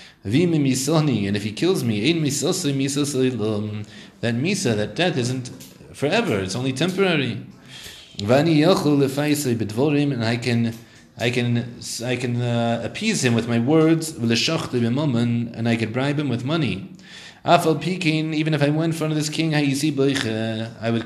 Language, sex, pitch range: English, male, 115-155 Hz